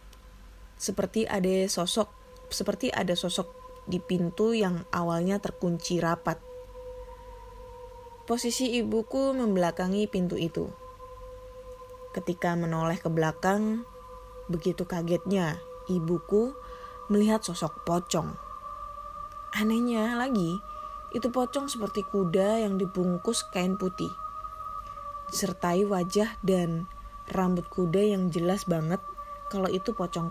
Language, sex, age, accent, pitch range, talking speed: Indonesian, female, 20-39, native, 175-250 Hz, 95 wpm